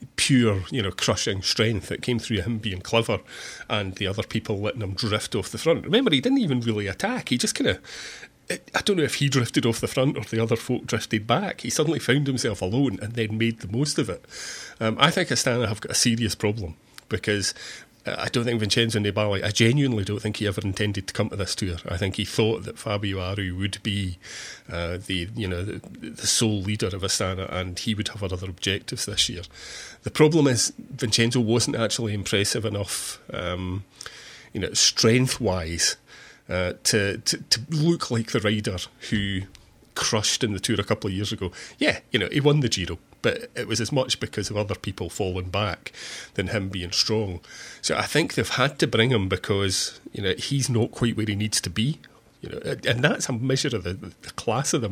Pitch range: 100-125 Hz